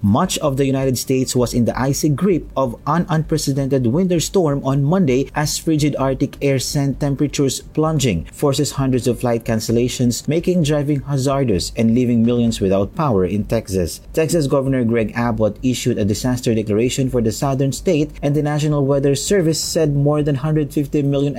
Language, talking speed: English, 170 wpm